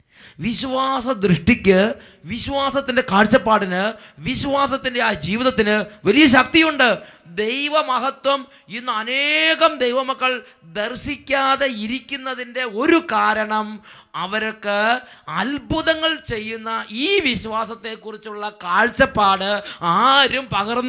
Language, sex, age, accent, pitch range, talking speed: English, male, 20-39, Indian, 205-260 Hz, 105 wpm